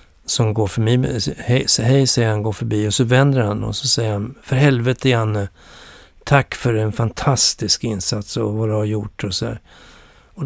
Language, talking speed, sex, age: Swedish, 185 wpm, male, 60-79